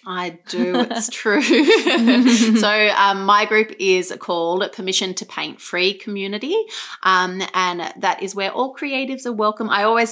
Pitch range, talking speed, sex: 180-230 Hz, 155 wpm, female